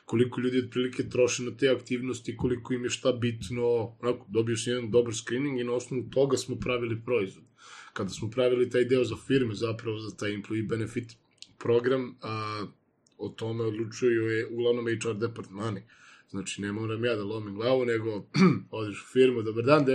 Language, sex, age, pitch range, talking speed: Croatian, male, 20-39, 110-125 Hz, 175 wpm